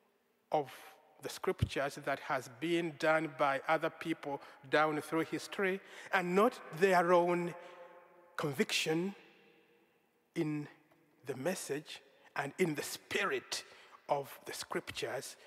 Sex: male